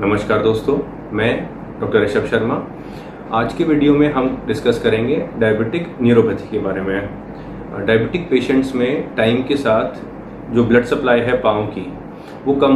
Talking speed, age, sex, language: 150 wpm, 30-49, male, Hindi